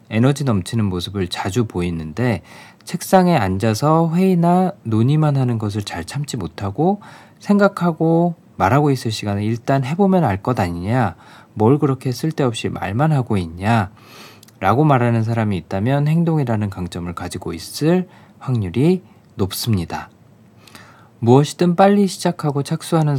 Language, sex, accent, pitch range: Korean, male, native, 100-155 Hz